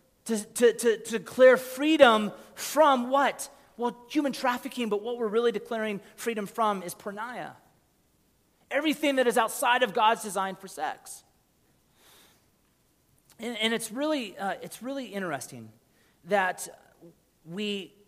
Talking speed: 125 wpm